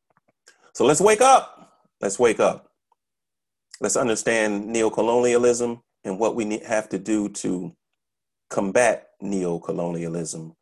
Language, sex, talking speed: English, male, 105 wpm